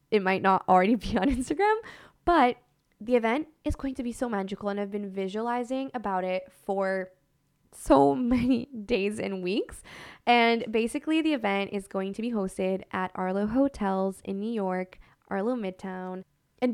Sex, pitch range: female, 190-240 Hz